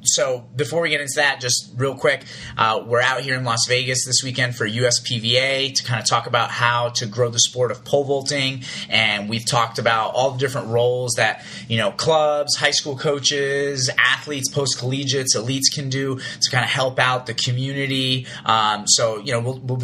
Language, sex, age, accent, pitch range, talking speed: English, male, 30-49, American, 120-135 Hz, 200 wpm